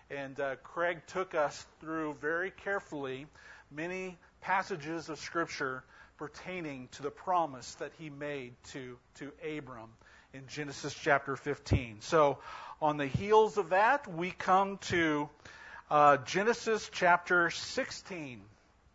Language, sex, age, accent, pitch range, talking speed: English, male, 50-69, American, 140-185 Hz, 125 wpm